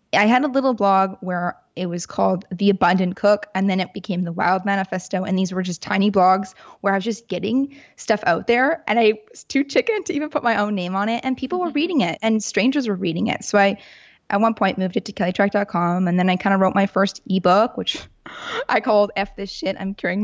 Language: English